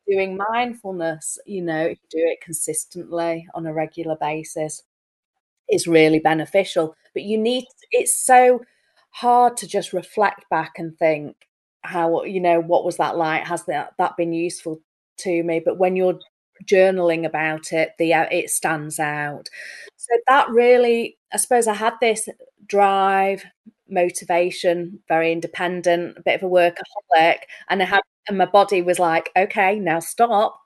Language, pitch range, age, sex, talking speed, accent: English, 170-210 Hz, 30-49, female, 160 wpm, British